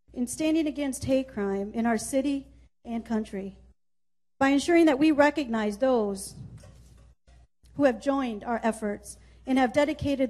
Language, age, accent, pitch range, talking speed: English, 40-59, American, 210-275 Hz, 140 wpm